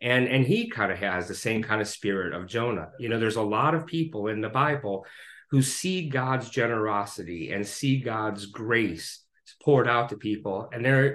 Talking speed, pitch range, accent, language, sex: 200 wpm, 110-140 Hz, American, English, male